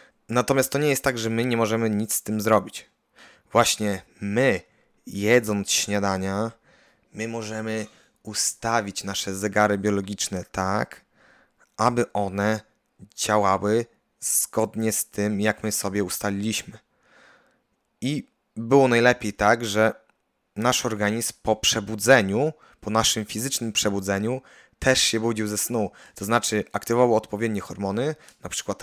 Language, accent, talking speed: Polish, native, 125 wpm